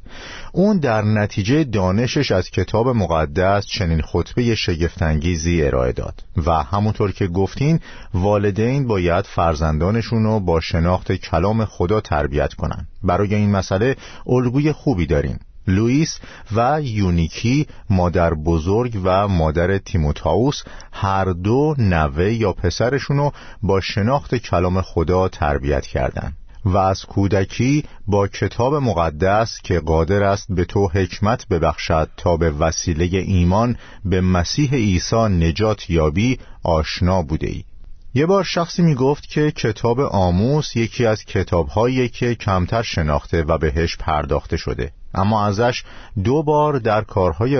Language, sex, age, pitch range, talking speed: Persian, male, 50-69, 85-115 Hz, 125 wpm